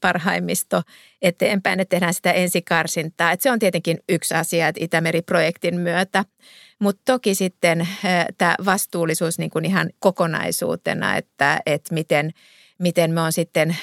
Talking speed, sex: 115 wpm, female